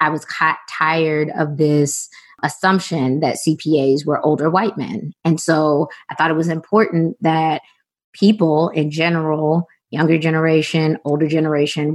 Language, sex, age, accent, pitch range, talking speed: English, female, 20-39, American, 155-175 Hz, 140 wpm